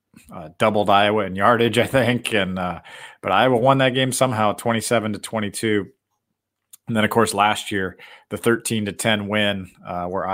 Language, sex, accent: English, male, American